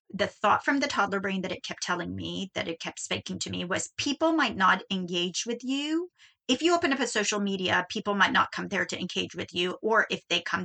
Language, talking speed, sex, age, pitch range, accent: English, 250 wpm, female, 30-49, 190-265 Hz, American